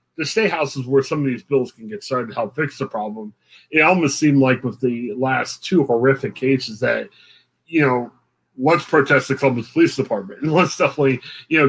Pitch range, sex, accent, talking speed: 135-185 Hz, male, American, 210 wpm